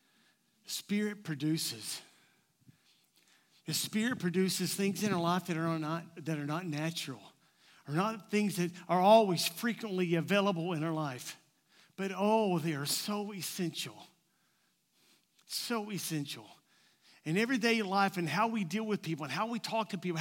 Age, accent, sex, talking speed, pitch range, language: 50-69, American, male, 150 wpm, 175-220 Hz, English